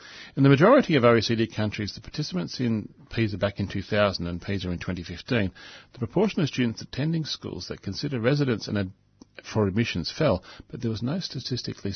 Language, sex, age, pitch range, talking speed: English, male, 40-59, 95-130 Hz, 170 wpm